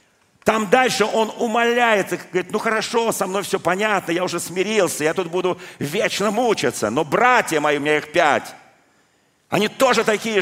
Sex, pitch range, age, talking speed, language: male, 140-190 Hz, 50-69, 165 wpm, Russian